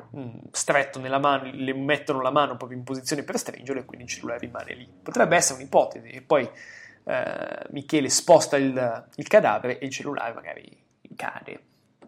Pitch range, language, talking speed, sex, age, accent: 135-175 Hz, Italian, 175 wpm, male, 20-39, native